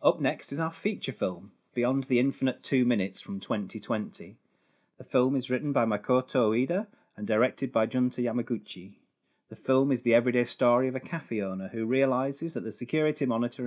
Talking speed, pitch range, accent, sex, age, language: 180 wpm, 110-135 Hz, British, male, 40-59, English